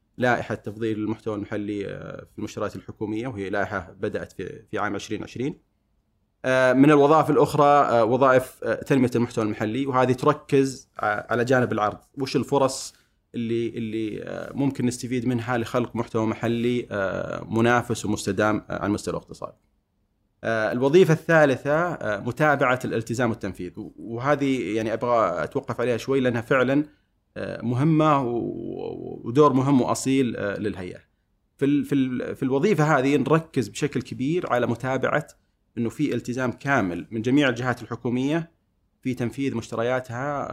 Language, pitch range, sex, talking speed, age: Arabic, 110-135 Hz, male, 115 wpm, 30-49